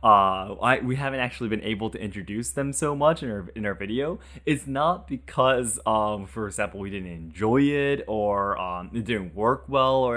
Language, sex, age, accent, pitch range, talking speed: English, male, 20-39, American, 100-130 Hz, 200 wpm